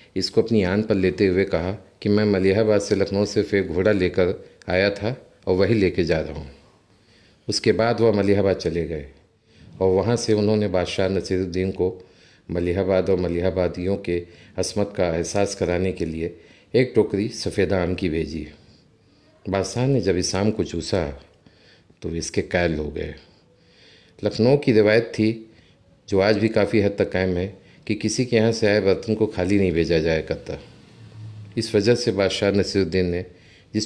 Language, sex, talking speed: Hindi, male, 170 wpm